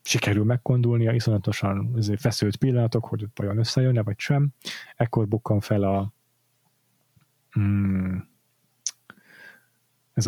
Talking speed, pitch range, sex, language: 100 wpm, 105-125 Hz, male, Hungarian